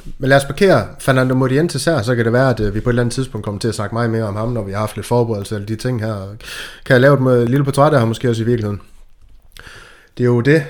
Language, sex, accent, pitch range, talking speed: Danish, male, native, 110-135 Hz, 290 wpm